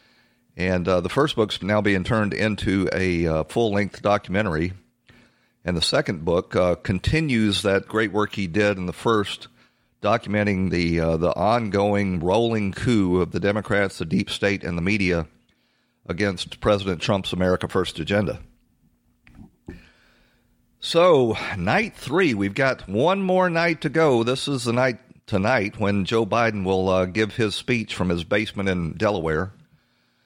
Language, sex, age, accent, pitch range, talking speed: English, male, 40-59, American, 90-115 Hz, 155 wpm